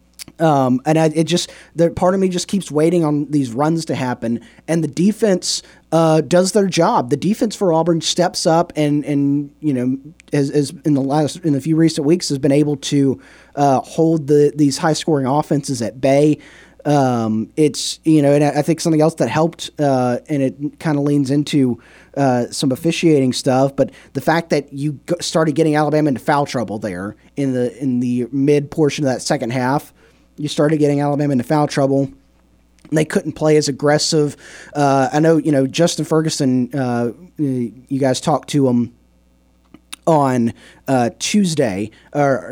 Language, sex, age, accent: English, male, 30-49, American